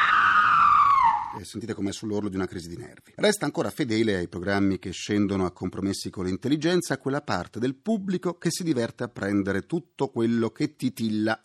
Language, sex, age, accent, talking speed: Italian, male, 40-59, native, 170 wpm